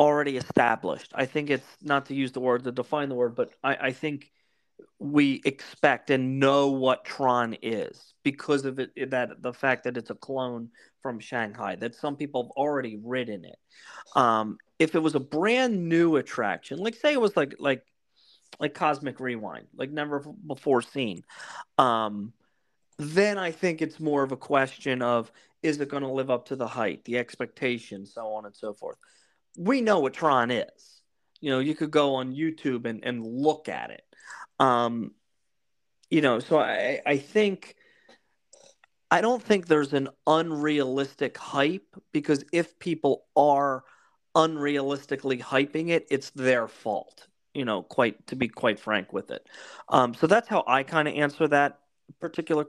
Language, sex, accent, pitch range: English, male, American, 125-155 Hz